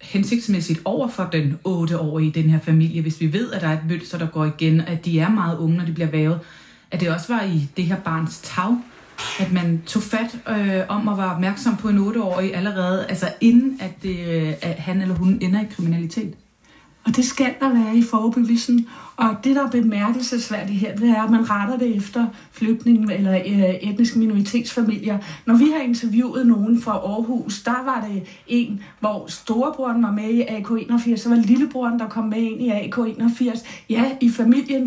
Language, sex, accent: Danish, female, native